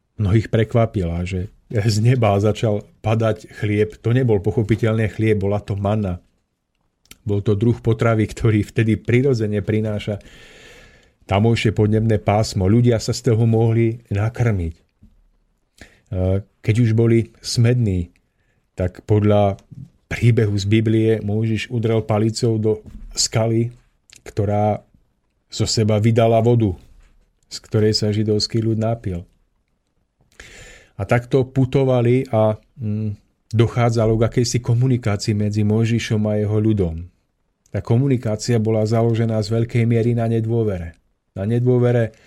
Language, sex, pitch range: Slovak, male, 105-115 Hz